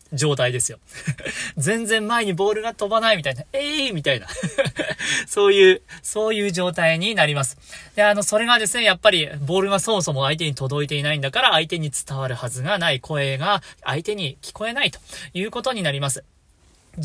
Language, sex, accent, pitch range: Japanese, male, native, 150-225 Hz